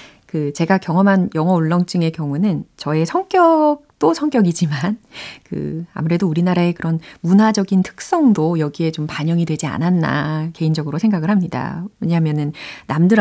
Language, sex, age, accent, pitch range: Korean, female, 30-49, native, 155-215 Hz